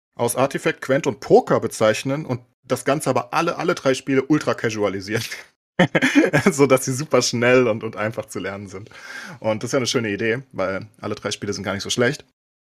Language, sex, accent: German, male, German